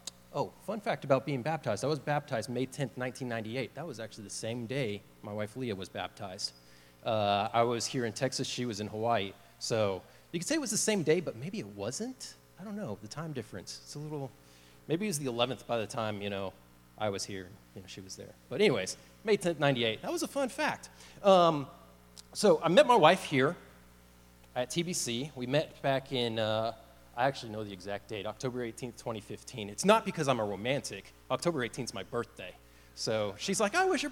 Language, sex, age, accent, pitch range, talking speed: English, male, 30-49, American, 100-155 Hz, 215 wpm